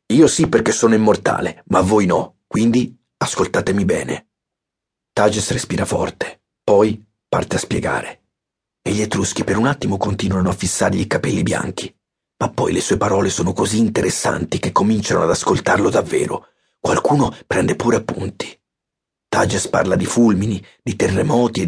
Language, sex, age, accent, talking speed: Italian, male, 40-59, native, 150 wpm